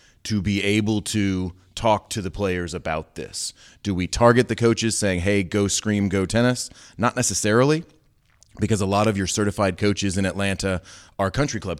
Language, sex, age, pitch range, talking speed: English, male, 30-49, 95-110 Hz, 180 wpm